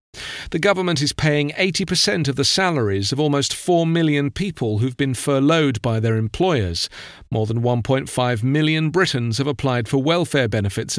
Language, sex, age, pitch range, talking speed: English, male, 40-59, 120-155 Hz, 160 wpm